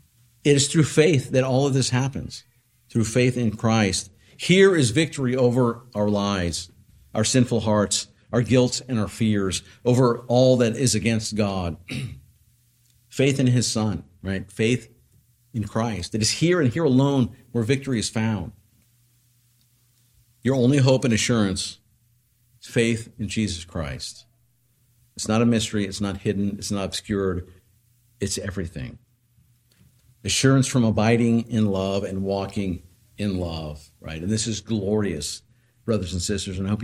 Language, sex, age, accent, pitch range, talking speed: English, male, 50-69, American, 100-120 Hz, 150 wpm